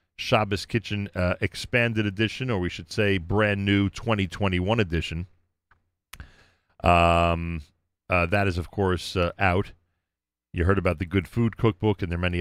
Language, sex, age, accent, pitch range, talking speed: English, male, 40-59, American, 90-105 Hz, 155 wpm